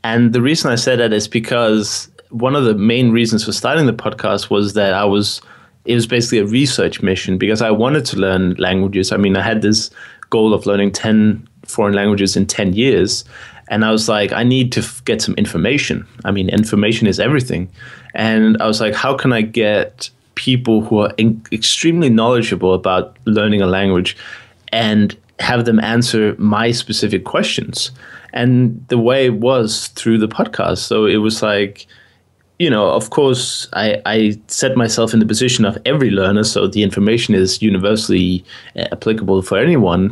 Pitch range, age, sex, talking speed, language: 100-120 Hz, 20-39, male, 180 wpm, English